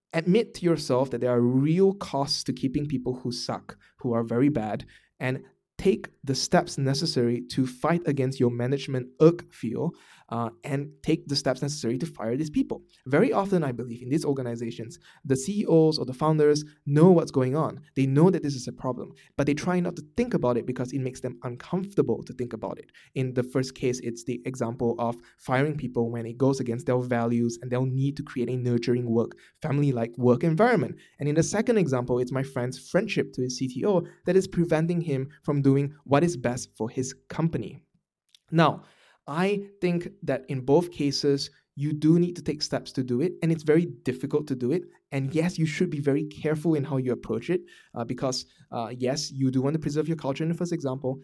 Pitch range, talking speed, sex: 125-160 Hz, 210 wpm, male